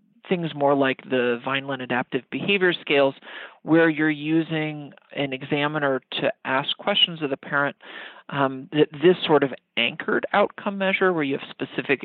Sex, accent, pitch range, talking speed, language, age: male, American, 135-160 Hz, 155 wpm, English, 40-59